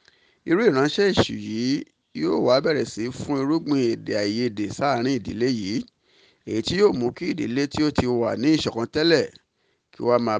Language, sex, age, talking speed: English, male, 50-69, 160 wpm